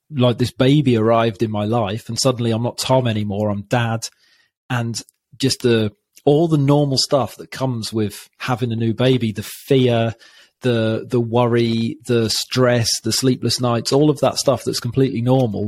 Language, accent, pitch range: English, British, 110-130 Hz